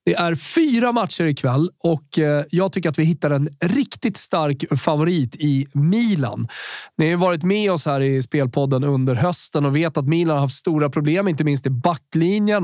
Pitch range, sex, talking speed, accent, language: 145-185 Hz, male, 185 wpm, native, Swedish